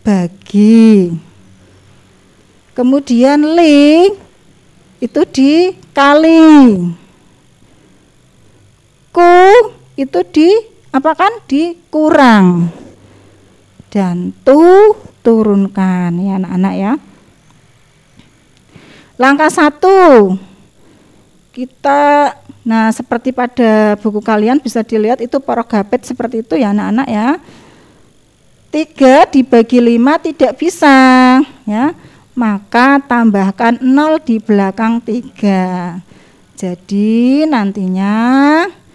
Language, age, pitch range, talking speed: Indonesian, 40-59, 210-300 Hz, 75 wpm